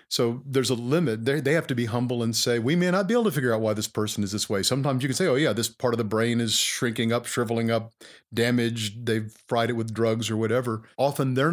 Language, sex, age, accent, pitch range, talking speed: English, male, 50-69, American, 110-130 Hz, 265 wpm